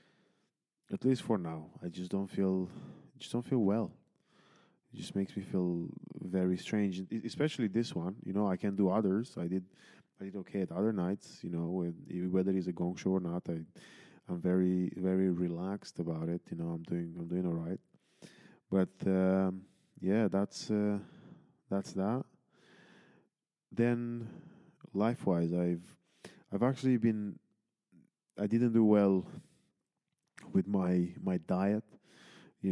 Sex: male